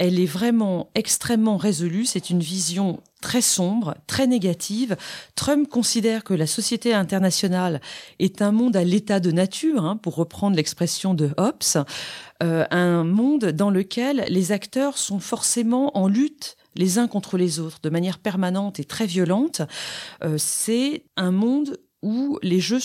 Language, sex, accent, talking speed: French, female, French, 160 wpm